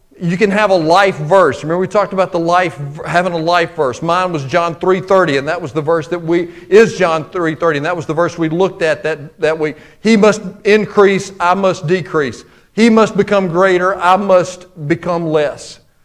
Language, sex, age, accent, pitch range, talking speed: English, male, 40-59, American, 170-205 Hz, 205 wpm